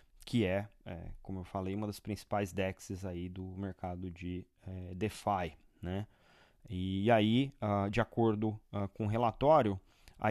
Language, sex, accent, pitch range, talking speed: Portuguese, male, Brazilian, 105-125 Hz, 130 wpm